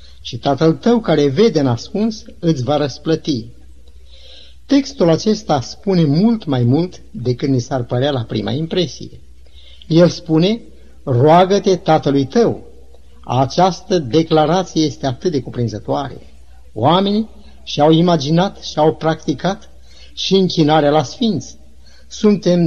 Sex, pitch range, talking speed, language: male, 105-170 Hz, 115 wpm, Romanian